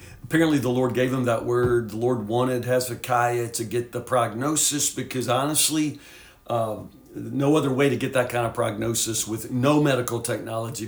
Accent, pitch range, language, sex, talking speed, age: American, 115-145 Hz, English, male, 170 wpm, 50-69